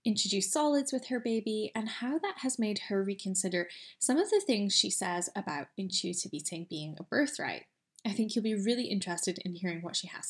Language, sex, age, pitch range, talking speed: English, female, 10-29, 180-235 Hz, 205 wpm